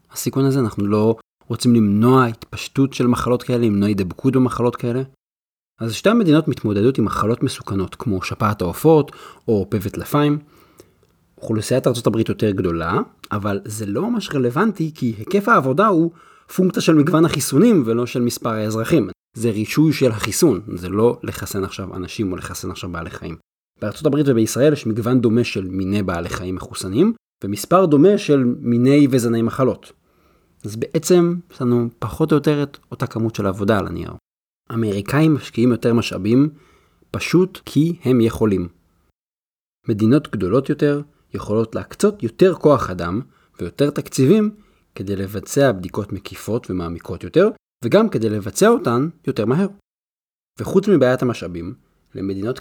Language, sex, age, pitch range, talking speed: Hebrew, male, 30-49, 105-145 Hz, 140 wpm